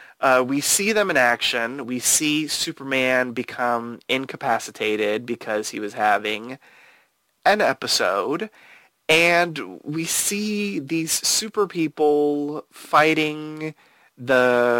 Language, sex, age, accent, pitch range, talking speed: English, male, 30-49, American, 125-175 Hz, 100 wpm